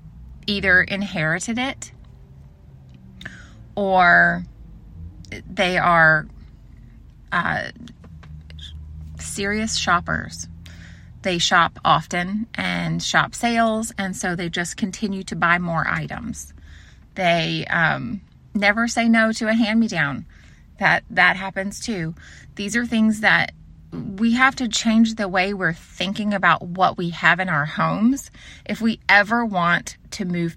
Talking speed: 120 wpm